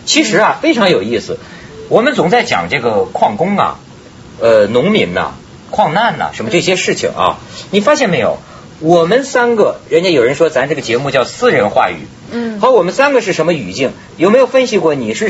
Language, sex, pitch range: Chinese, male, 150-245 Hz